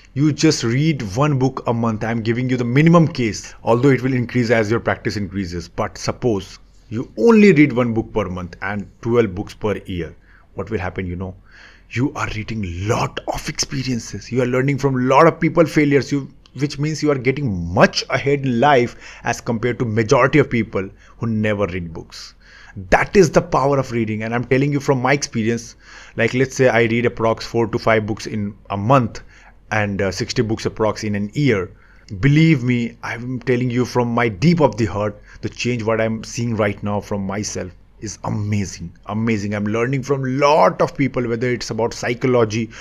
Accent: native